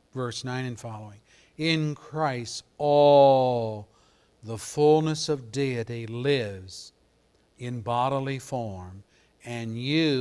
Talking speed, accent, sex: 100 wpm, American, male